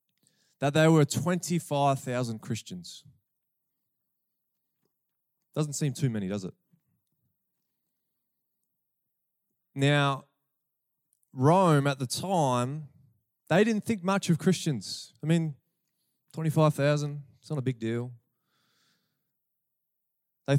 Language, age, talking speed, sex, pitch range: English, 20-39, 90 wpm, male, 130-160 Hz